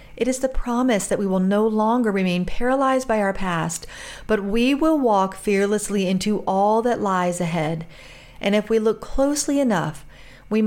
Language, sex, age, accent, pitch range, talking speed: English, female, 50-69, American, 175-225 Hz, 175 wpm